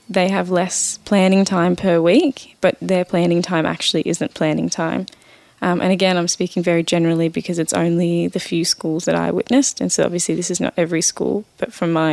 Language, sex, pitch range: English, female, 165-190 Hz